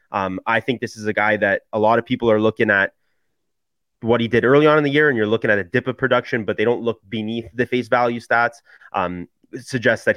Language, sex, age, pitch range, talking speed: English, male, 30-49, 115-155 Hz, 255 wpm